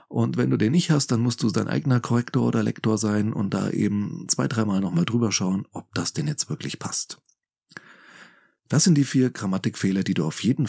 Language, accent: German, German